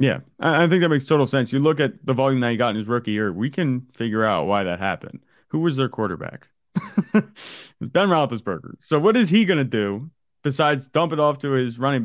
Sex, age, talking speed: male, 30-49, 230 wpm